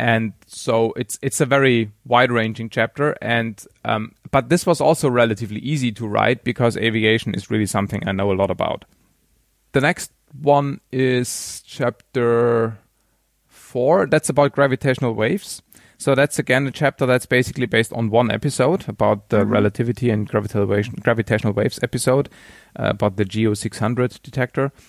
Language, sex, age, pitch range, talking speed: English, male, 30-49, 105-130 Hz, 150 wpm